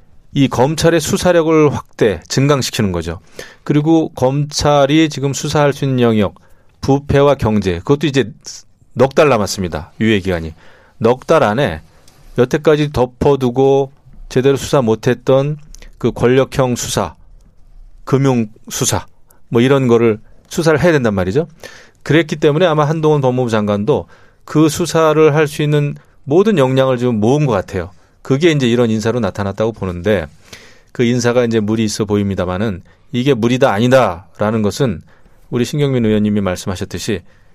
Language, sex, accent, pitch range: Korean, male, native, 105-140 Hz